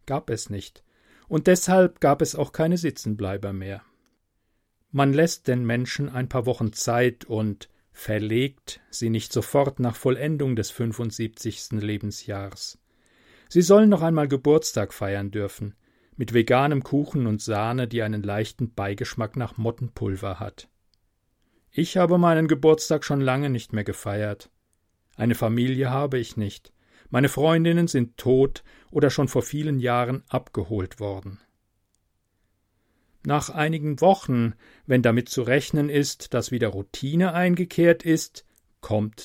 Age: 40-59